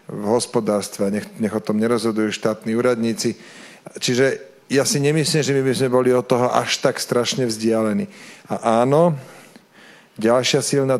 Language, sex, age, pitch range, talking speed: Slovak, male, 40-59, 115-150 Hz, 155 wpm